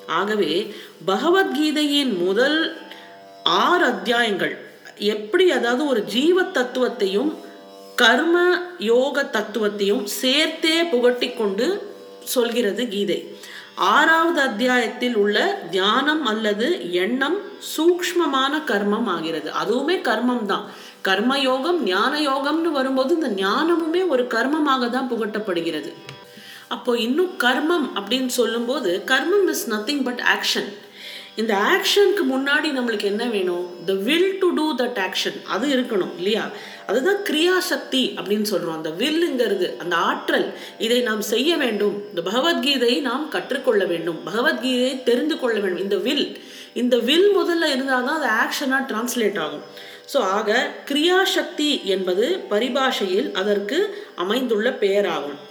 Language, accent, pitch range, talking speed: Tamil, native, 210-310 Hz, 110 wpm